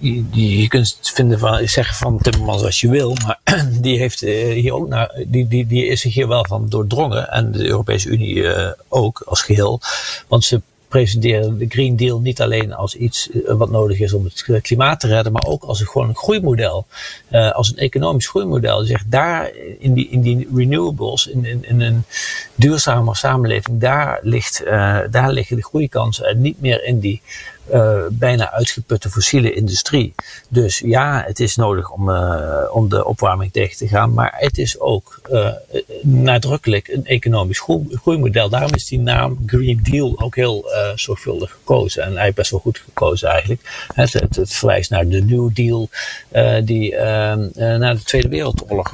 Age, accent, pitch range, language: 50-69, Dutch, 105-125 Hz, Dutch